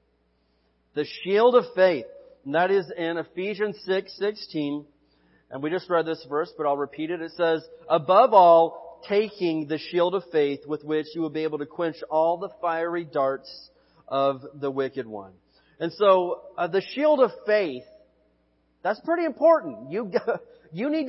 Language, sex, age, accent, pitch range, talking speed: English, male, 40-59, American, 155-210 Hz, 170 wpm